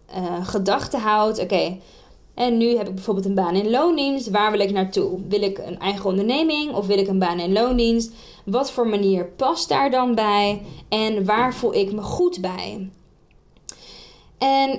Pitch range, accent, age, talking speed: 200-245 Hz, Dutch, 20-39, 180 wpm